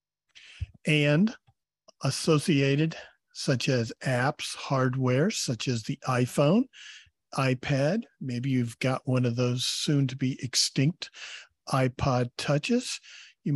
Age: 50-69